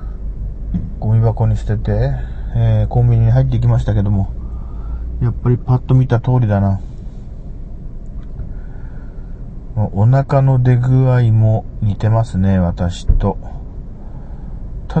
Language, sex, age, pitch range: Japanese, male, 40-59, 95-120 Hz